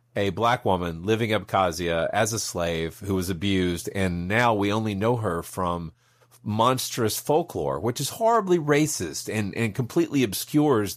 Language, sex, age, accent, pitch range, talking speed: English, male, 40-59, American, 95-130 Hz, 155 wpm